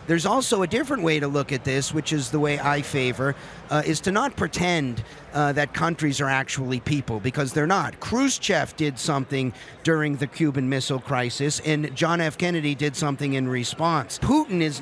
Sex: male